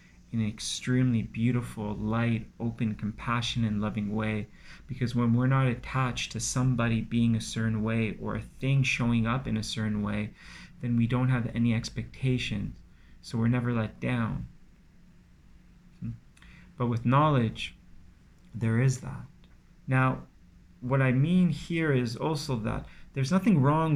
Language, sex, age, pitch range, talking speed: English, male, 30-49, 115-140 Hz, 145 wpm